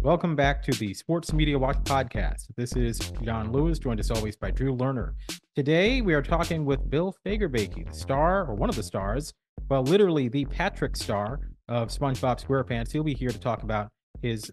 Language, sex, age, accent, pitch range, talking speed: English, male, 30-49, American, 115-150 Hz, 195 wpm